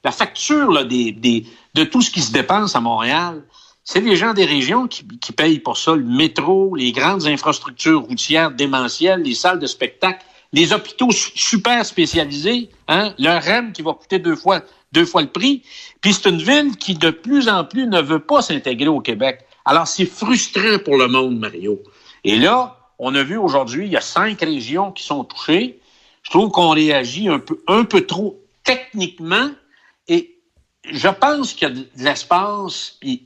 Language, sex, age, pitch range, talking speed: French, male, 60-79, 135-220 Hz, 185 wpm